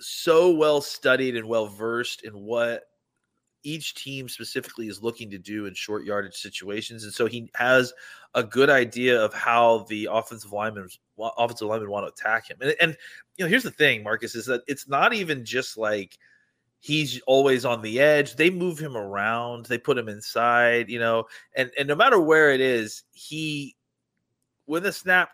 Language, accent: English, American